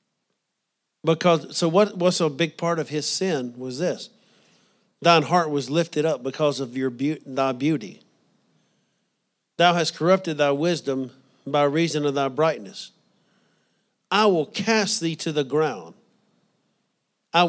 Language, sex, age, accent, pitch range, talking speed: English, male, 50-69, American, 145-180 Hz, 140 wpm